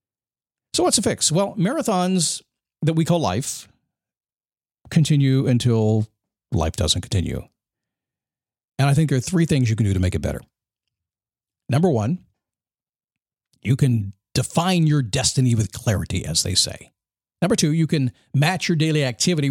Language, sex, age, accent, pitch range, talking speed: English, male, 50-69, American, 110-165 Hz, 150 wpm